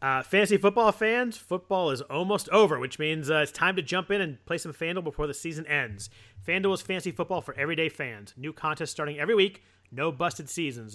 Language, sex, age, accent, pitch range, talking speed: English, male, 30-49, American, 135-175 Hz, 215 wpm